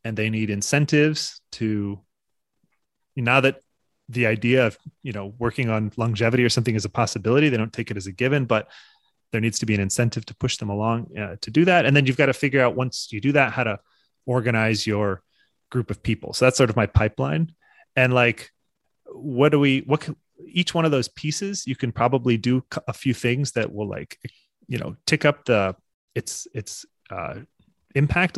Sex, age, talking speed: male, 30-49, 205 wpm